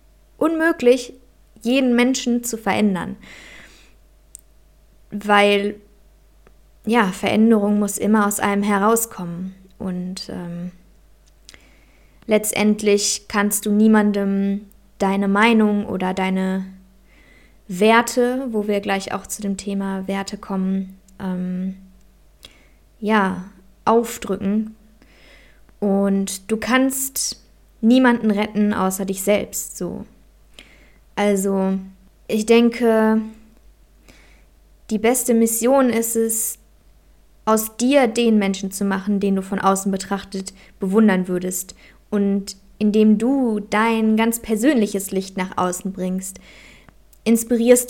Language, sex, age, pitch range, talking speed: German, female, 20-39, 190-225 Hz, 95 wpm